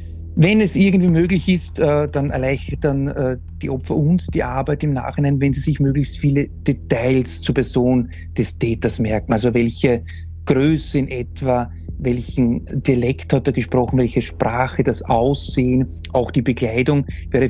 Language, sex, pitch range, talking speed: German, male, 115-135 Hz, 145 wpm